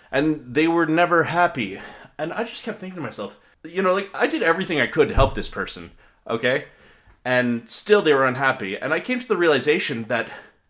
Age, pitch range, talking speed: 30-49, 145-205 Hz, 210 wpm